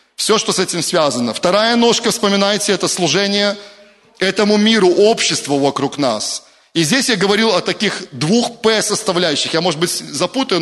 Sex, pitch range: male, 165-210 Hz